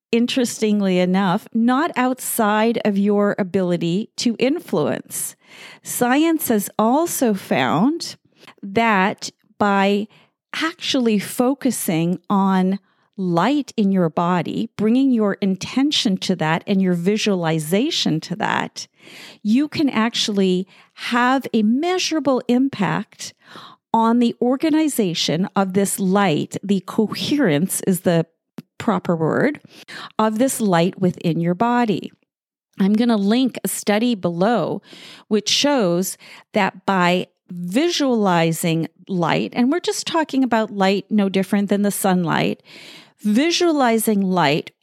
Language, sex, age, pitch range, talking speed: English, female, 40-59, 190-245 Hz, 110 wpm